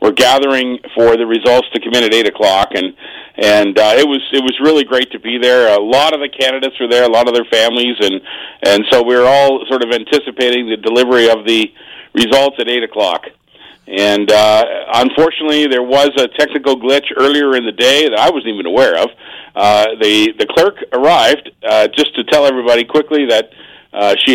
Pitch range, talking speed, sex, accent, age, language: 115-145 Hz, 205 wpm, male, American, 50-69, English